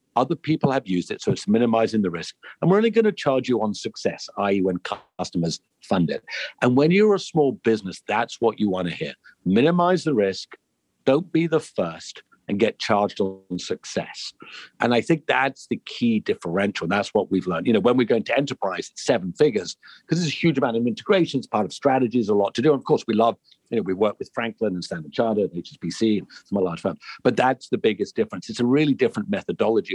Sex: male